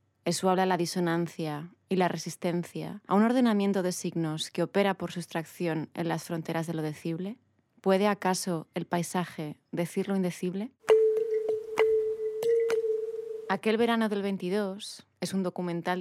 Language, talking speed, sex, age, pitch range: English, 135 wpm, female, 20-39, 170-200 Hz